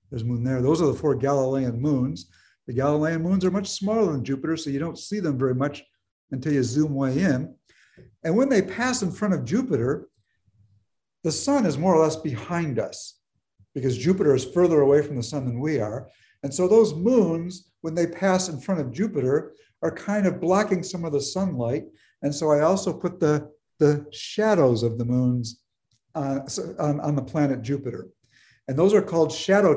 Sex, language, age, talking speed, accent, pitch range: male, English, 60-79, 200 wpm, American, 125-160 Hz